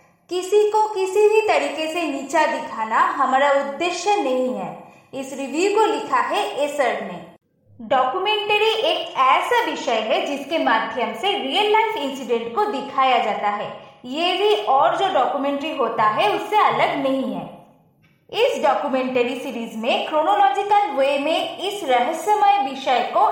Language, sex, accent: Hindi, female, native